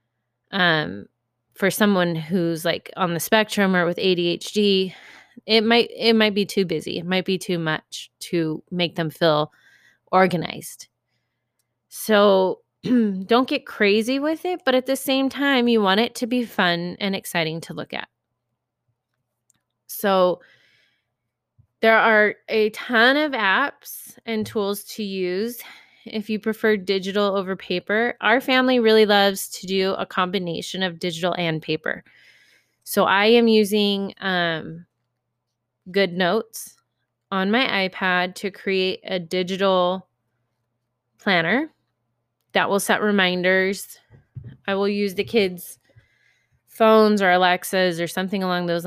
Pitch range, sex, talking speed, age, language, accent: 165-210 Hz, female, 135 wpm, 20-39, English, American